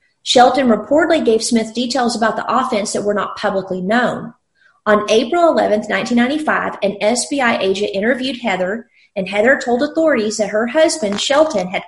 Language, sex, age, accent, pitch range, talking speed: English, female, 40-59, American, 205-270 Hz, 155 wpm